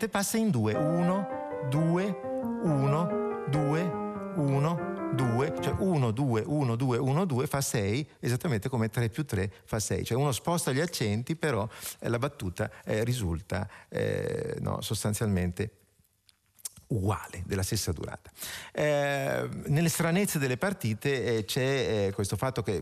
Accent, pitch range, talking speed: native, 105-160 Hz, 140 wpm